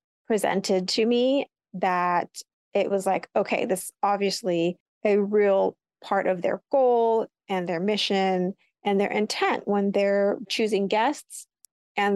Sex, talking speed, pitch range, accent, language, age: female, 135 wpm, 195-235 Hz, American, English, 30-49